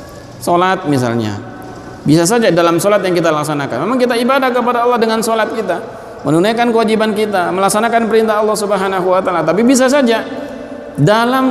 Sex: male